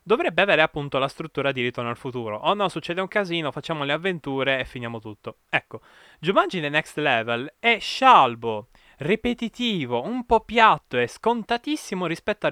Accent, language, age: native, Italian, 20-39